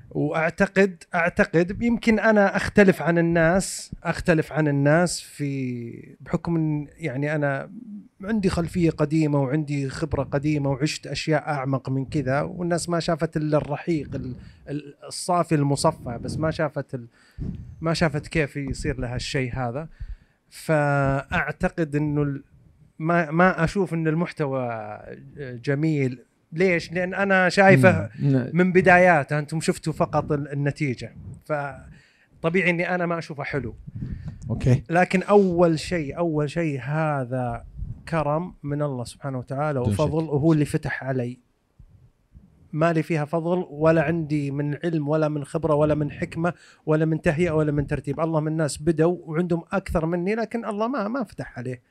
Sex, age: male, 30-49